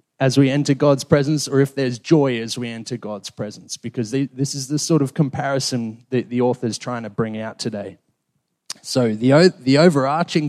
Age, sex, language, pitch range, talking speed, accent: 30-49, male, English, 120-145 Hz, 195 wpm, Australian